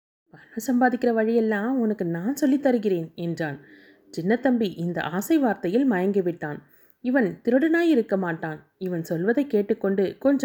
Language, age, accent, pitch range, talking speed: Tamil, 30-49, native, 180-245 Hz, 115 wpm